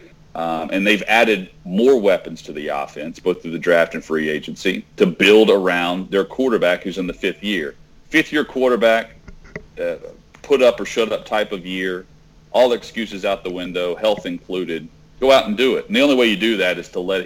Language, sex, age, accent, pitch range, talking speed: English, male, 40-59, American, 90-115 Hz, 190 wpm